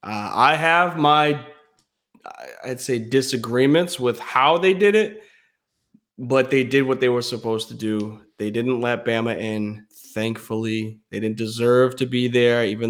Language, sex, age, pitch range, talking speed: English, male, 20-39, 120-165 Hz, 155 wpm